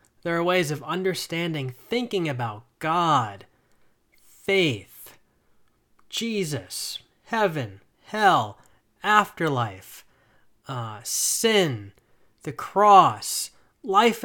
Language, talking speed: English, 75 wpm